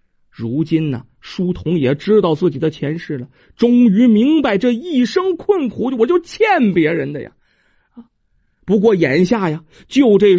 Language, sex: Chinese, male